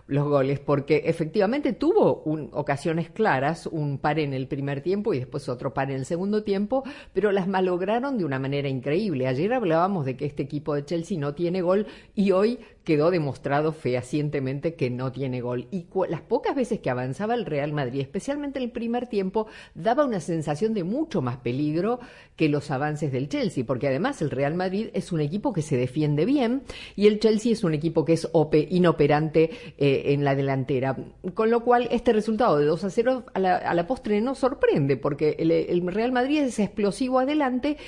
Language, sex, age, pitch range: Spanish, female, 50-69, 145-215 Hz